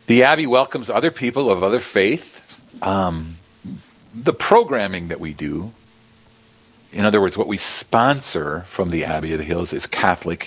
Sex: male